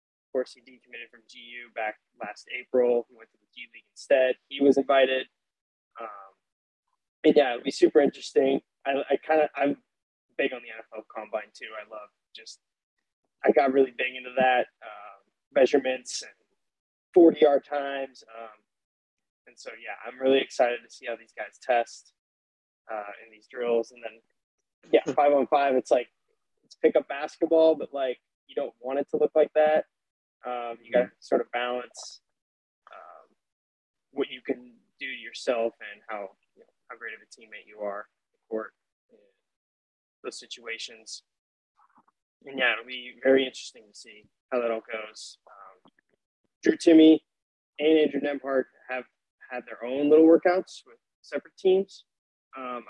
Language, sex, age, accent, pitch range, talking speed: English, male, 20-39, American, 115-145 Hz, 165 wpm